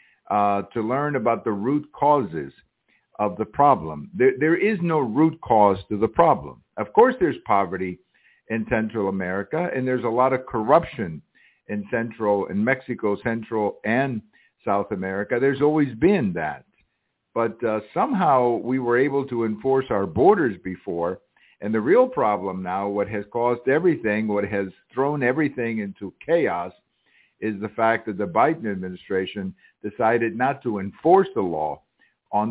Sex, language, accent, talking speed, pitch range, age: male, English, American, 155 wpm, 105-130 Hz, 60-79